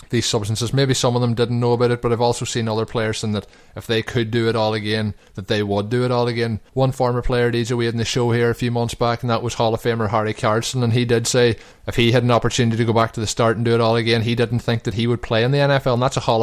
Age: 20-39